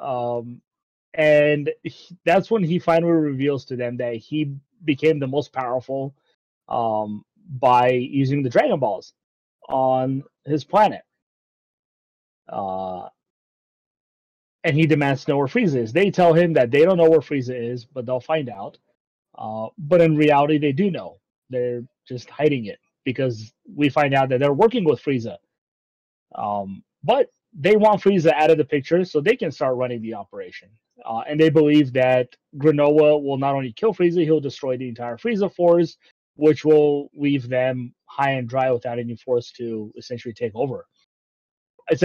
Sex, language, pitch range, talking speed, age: male, English, 120-160 Hz, 165 wpm, 30-49